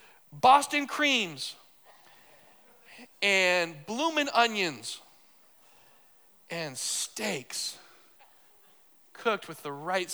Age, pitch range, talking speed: 40-59, 160-220 Hz, 65 wpm